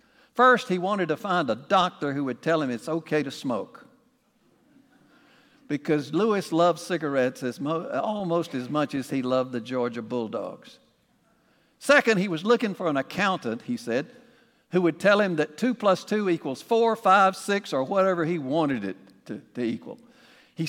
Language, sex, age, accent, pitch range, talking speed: English, male, 60-79, American, 145-215 Hz, 175 wpm